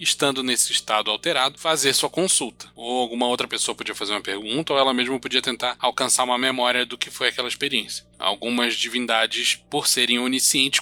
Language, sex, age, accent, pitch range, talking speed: Portuguese, male, 20-39, Brazilian, 120-150 Hz, 185 wpm